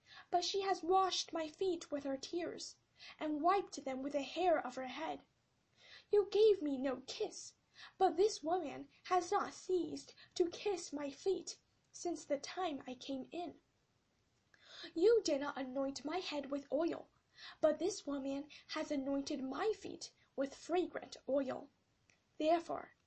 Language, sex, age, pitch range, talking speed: English, female, 10-29, 265-360 Hz, 150 wpm